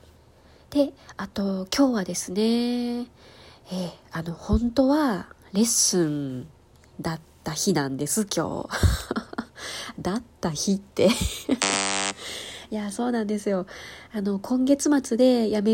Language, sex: Japanese, female